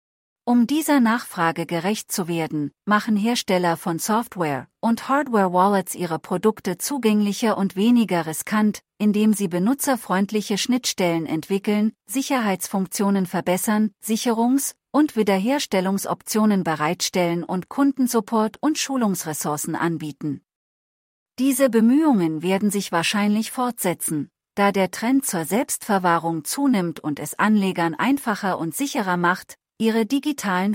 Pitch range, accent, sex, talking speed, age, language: 170-230 Hz, German, female, 105 wpm, 40-59, English